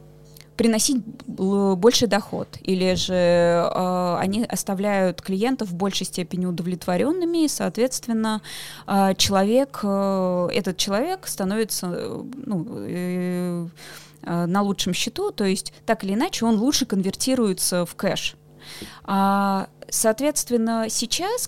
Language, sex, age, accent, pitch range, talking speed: Russian, female, 20-39, native, 185-225 Hz, 90 wpm